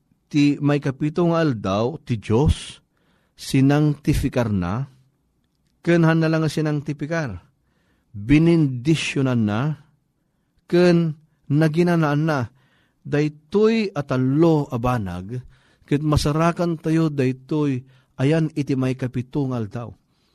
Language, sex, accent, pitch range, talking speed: Filipino, male, native, 130-160 Hz, 95 wpm